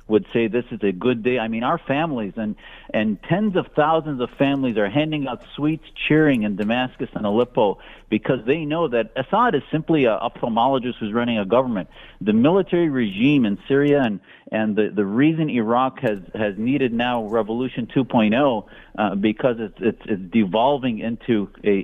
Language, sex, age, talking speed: English, male, 50-69, 180 wpm